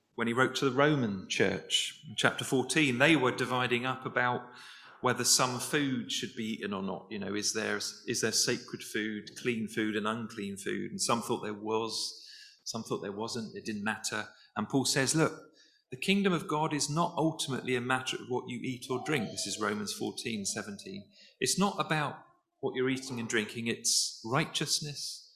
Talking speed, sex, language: 195 wpm, male, English